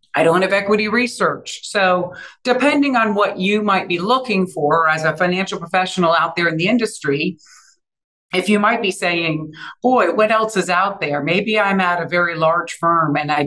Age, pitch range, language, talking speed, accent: 50-69, 170-210 Hz, English, 190 wpm, American